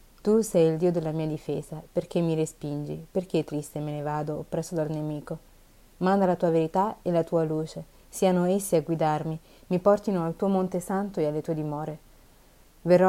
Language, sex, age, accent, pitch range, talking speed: Italian, female, 30-49, native, 155-185 Hz, 190 wpm